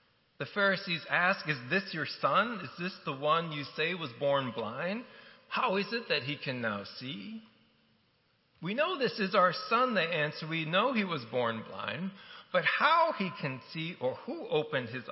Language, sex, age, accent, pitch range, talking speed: English, male, 40-59, American, 125-165 Hz, 185 wpm